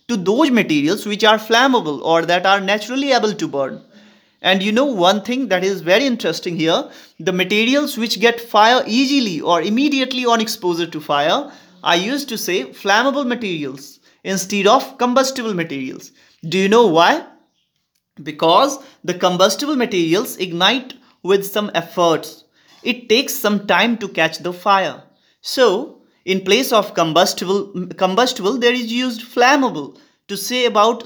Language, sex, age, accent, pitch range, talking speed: Hindi, male, 30-49, native, 185-250 Hz, 150 wpm